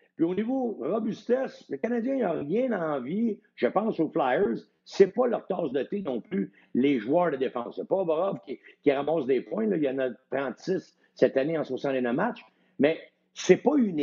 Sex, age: male, 60-79